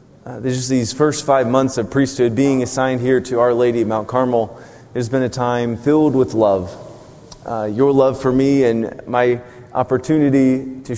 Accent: American